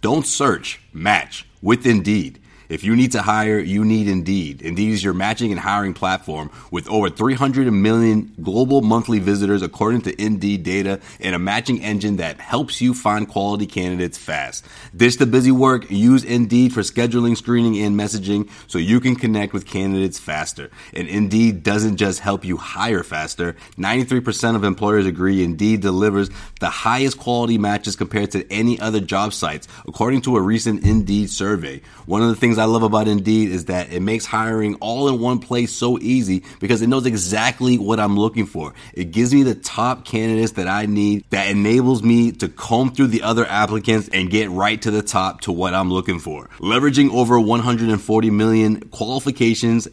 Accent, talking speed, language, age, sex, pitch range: American, 180 wpm, English, 30-49, male, 95-115 Hz